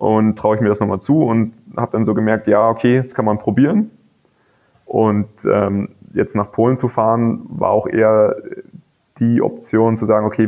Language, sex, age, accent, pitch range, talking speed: German, male, 20-39, German, 105-125 Hz, 190 wpm